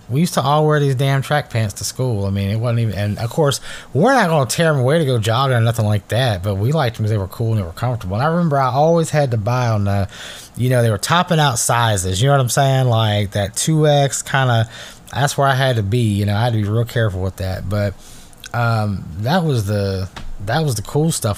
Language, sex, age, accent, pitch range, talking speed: English, male, 20-39, American, 105-135 Hz, 275 wpm